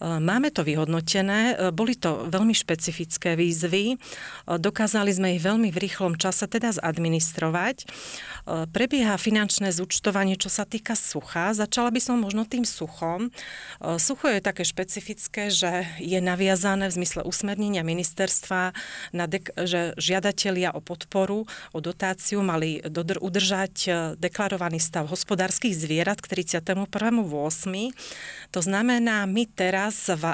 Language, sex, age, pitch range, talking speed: Slovak, female, 40-59, 170-205 Hz, 125 wpm